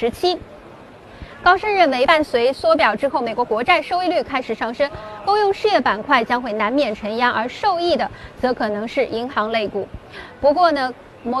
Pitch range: 245-315 Hz